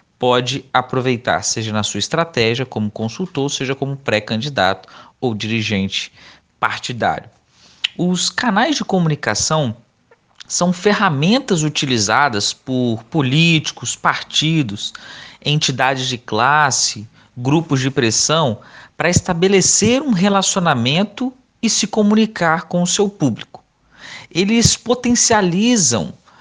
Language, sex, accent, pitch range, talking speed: Portuguese, male, Brazilian, 130-180 Hz, 100 wpm